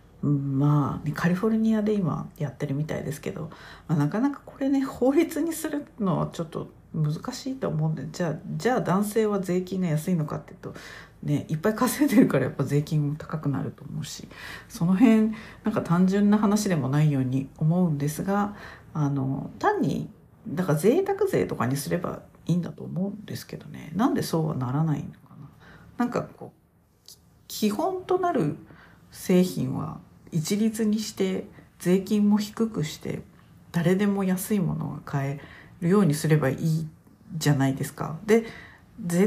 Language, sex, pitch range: Japanese, female, 150-210 Hz